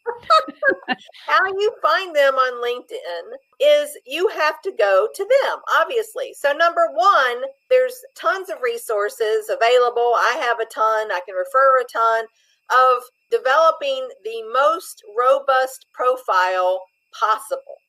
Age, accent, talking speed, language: 50-69, American, 130 wpm, English